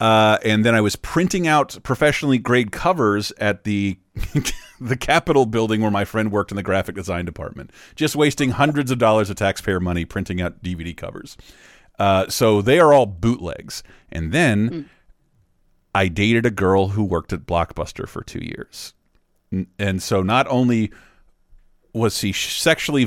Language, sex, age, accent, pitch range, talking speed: English, male, 40-59, American, 95-125 Hz, 160 wpm